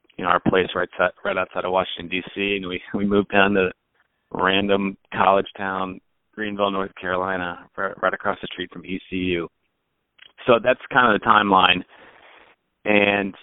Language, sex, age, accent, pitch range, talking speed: English, male, 30-49, American, 90-100 Hz, 155 wpm